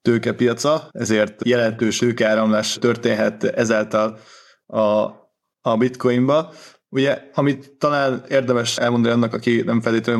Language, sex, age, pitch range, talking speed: Hungarian, male, 20-39, 115-130 Hz, 105 wpm